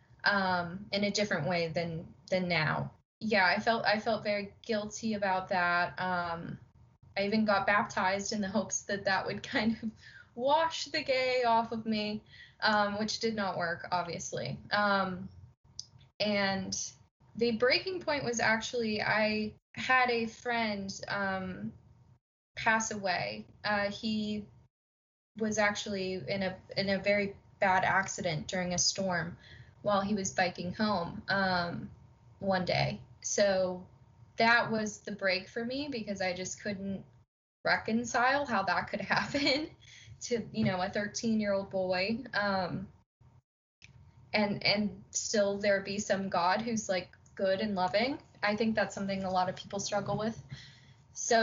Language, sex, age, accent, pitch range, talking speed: English, female, 10-29, American, 180-215 Hz, 145 wpm